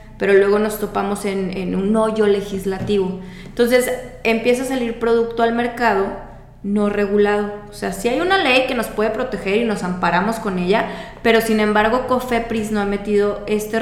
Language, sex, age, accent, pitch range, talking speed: Spanish, female, 20-39, Mexican, 195-225 Hz, 180 wpm